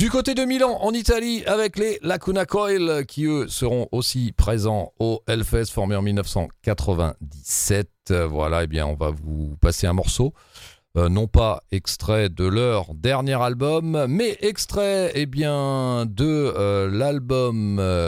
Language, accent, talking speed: French, French, 145 wpm